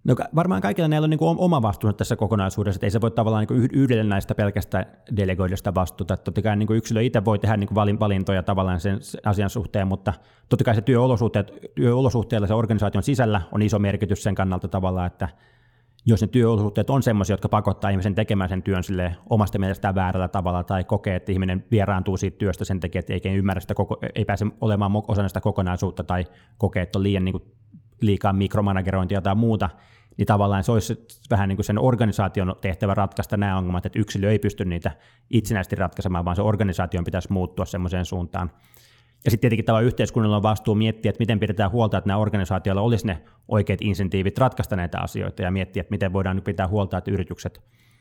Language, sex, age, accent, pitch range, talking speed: Finnish, male, 20-39, native, 95-110 Hz, 190 wpm